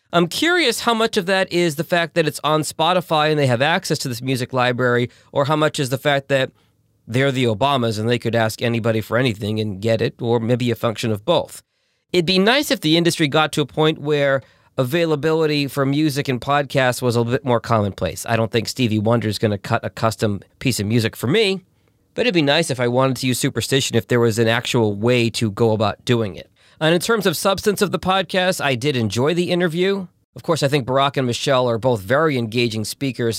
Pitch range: 115-155 Hz